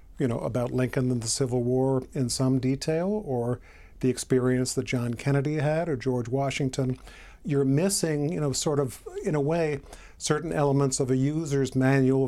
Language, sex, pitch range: English, male, 130-145 Hz